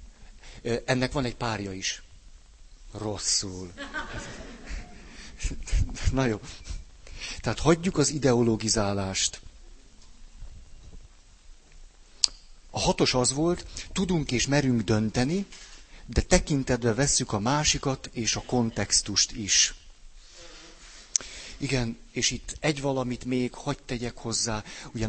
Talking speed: 95 wpm